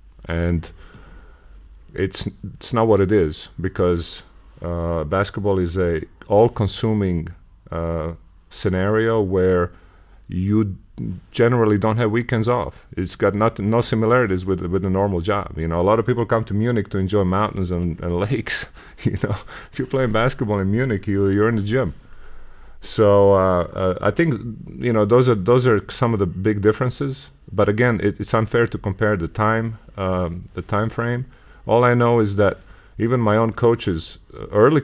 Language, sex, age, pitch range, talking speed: German, male, 30-49, 90-115 Hz, 170 wpm